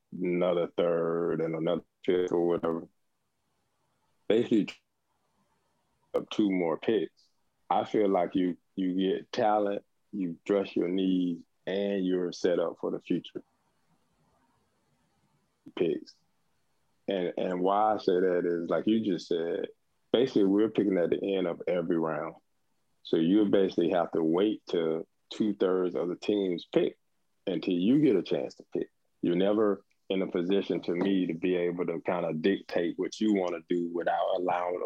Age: 20-39